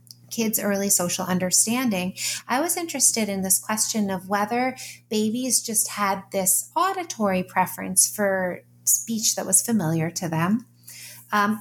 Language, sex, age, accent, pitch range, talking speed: English, female, 30-49, American, 190-240 Hz, 135 wpm